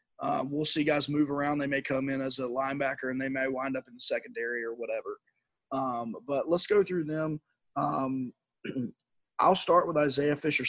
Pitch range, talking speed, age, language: 130-150 Hz, 195 wpm, 20-39, English